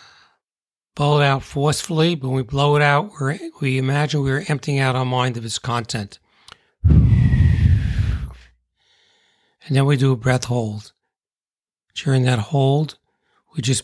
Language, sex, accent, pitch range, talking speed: English, male, American, 120-145 Hz, 145 wpm